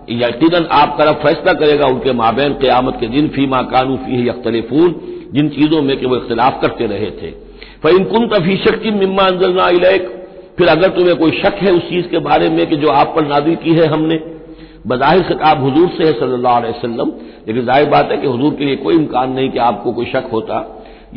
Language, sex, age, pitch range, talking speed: Hindi, male, 60-79, 135-180 Hz, 205 wpm